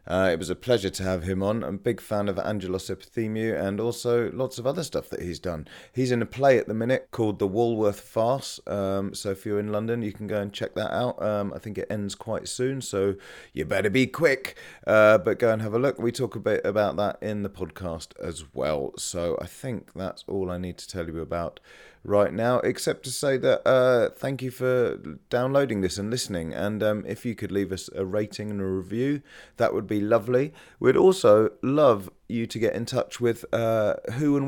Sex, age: male, 30-49